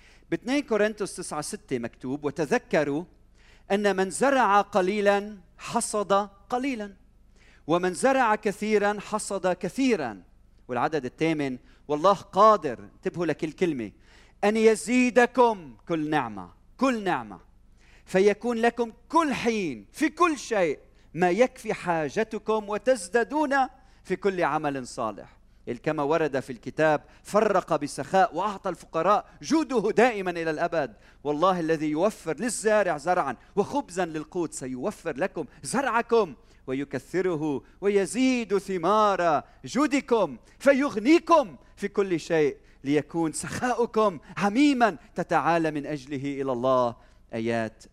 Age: 40-59